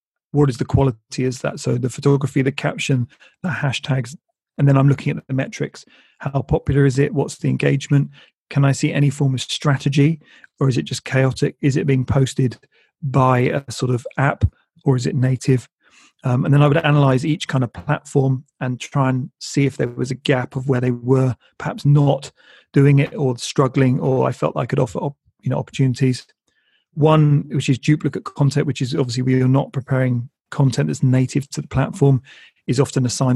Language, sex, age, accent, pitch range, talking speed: English, male, 30-49, British, 130-145 Hz, 200 wpm